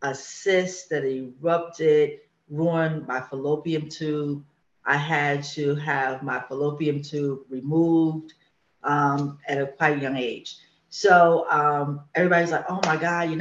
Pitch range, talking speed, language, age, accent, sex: 140-170 Hz, 140 wpm, English, 30-49, American, female